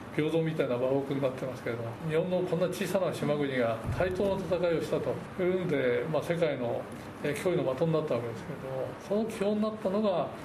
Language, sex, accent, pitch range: Japanese, male, native, 135-195 Hz